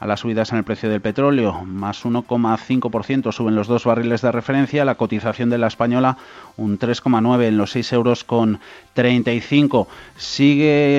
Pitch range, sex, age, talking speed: 110-130 Hz, male, 30-49, 155 wpm